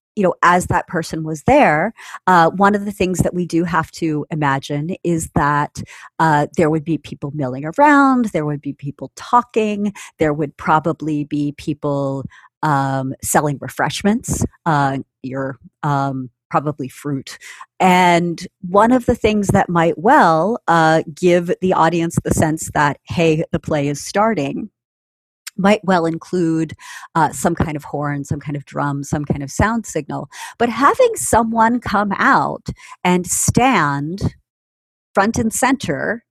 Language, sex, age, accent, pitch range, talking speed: English, female, 30-49, American, 145-195 Hz, 150 wpm